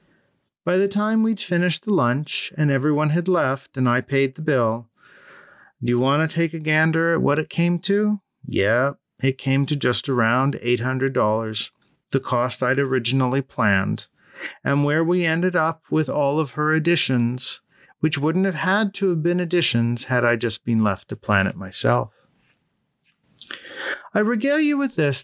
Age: 40-59